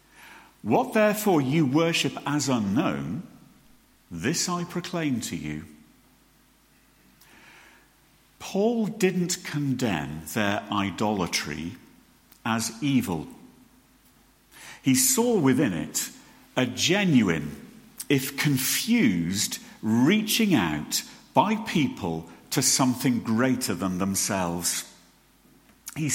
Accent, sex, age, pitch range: British, male, 50-69, 105-170 Hz